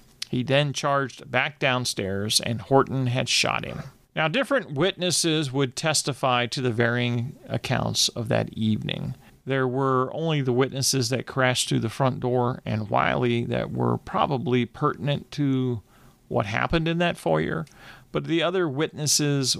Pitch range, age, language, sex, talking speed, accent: 120-150 Hz, 40-59, English, male, 150 wpm, American